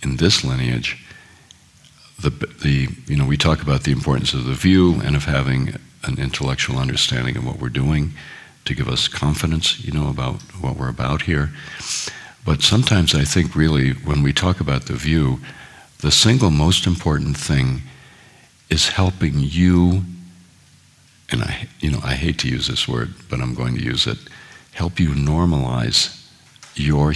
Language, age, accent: English, 60-79, American